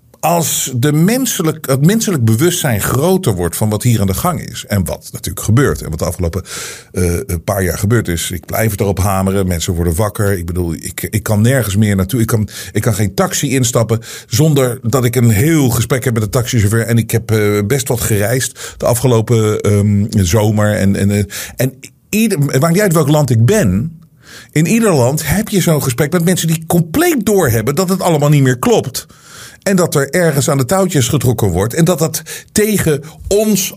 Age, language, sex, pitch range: 50-69, Dutch, male, 105-160 Hz